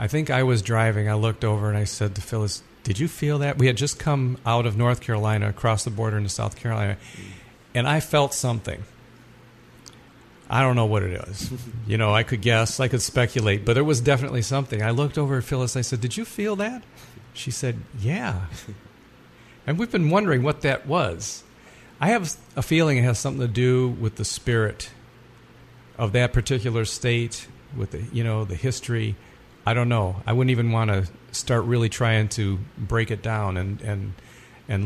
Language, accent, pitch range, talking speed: English, American, 110-130 Hz, 200 wpm